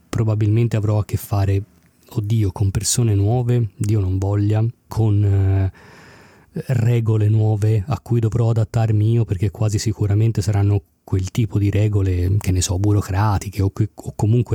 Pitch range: 100-115 Hz